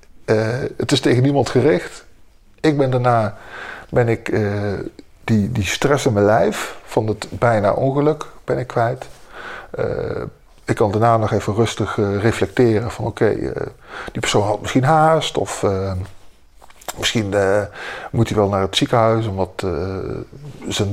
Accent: Dutch